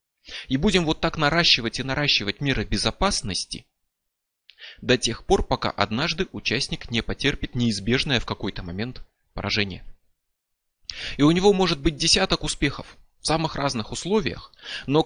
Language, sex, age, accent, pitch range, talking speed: Russian, male, 20-39, native, 105-150 Hz, 135 wpm